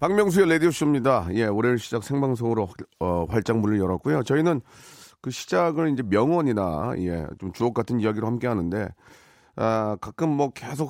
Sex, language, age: male, Korean, 40-59